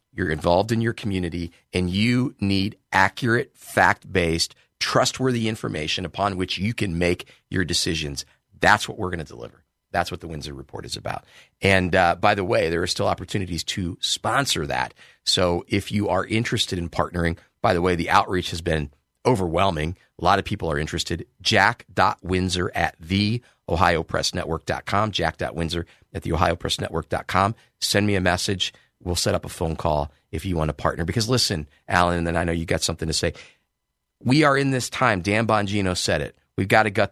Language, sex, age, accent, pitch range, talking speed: English, male, 40-59, American, 85-105 Hz, 185 wpm